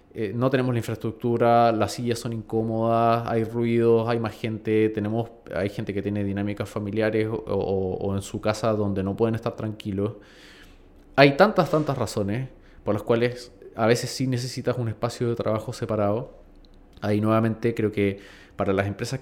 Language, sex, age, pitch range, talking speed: Spanish, male, 20-39, 110-140 Hz, 160 wpm